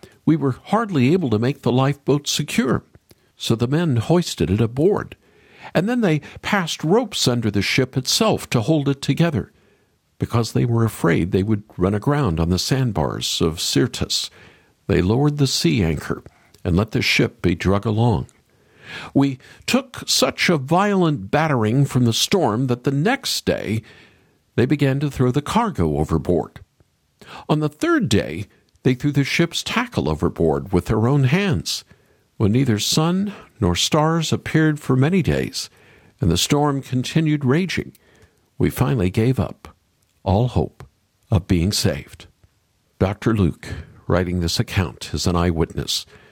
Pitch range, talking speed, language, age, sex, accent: 105-150 Hz, 155 wpm, English, 60-79, male, American